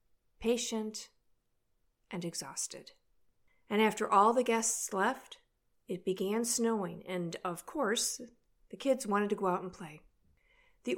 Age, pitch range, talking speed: 40-59, 185-230 Hz, 130 wpm